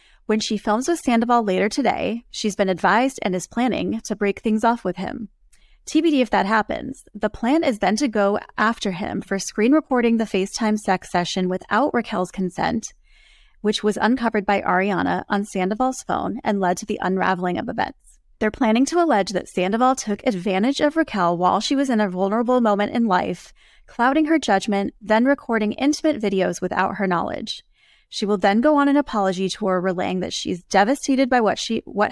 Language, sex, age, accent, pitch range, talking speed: English, female, 30-49, American, 195-240 Hz, 190 wpm